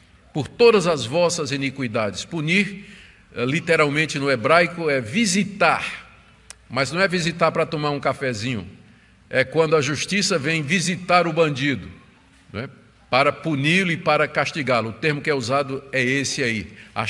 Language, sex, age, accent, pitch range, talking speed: Portuguese, male, 50-69, Brazilian, 120-170 Hz, 150 wpm